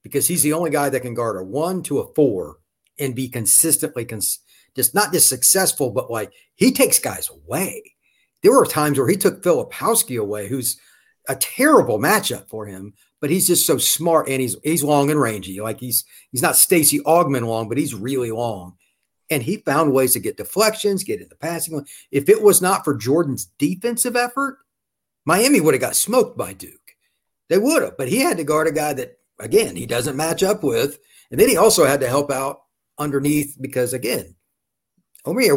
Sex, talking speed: male, 195 wpm